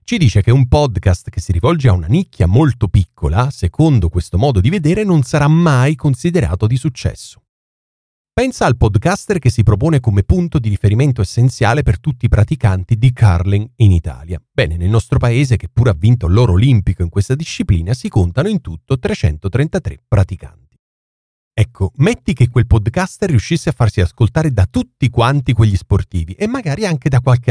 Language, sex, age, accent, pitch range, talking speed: Italian, male, 40-59, native, 95-145 Hz, 175 wpm